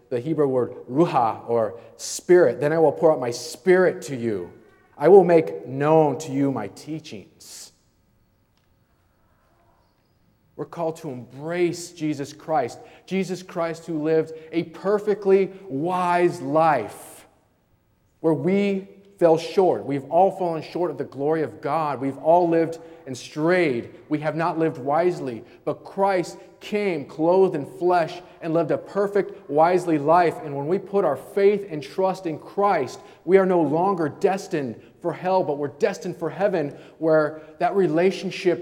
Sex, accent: male, American